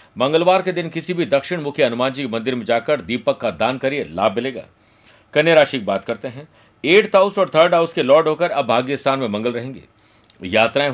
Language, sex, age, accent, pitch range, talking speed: Hindi, male, 50-69, native, 125-160 Hz, 215 wpm